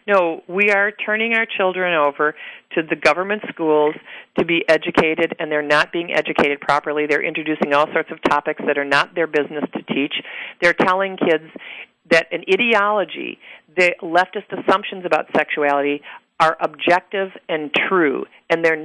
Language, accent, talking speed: English, American, 160 wpm